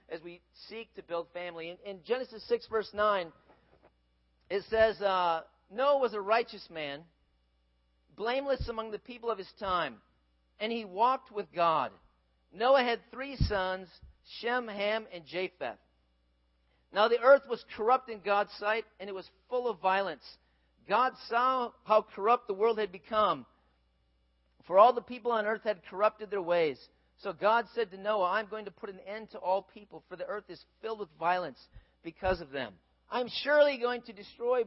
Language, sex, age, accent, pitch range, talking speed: English, male, 40-59, American, 180-240 Hz, 175 wpm